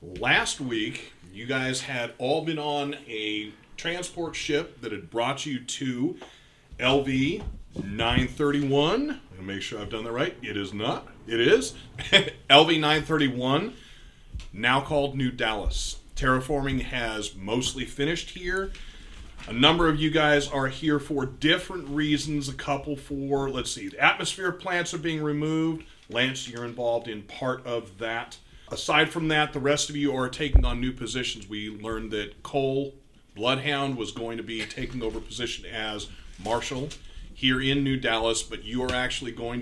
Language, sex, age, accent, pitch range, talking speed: English, male, 30-49, American, 110-145 Hz, 160 wpm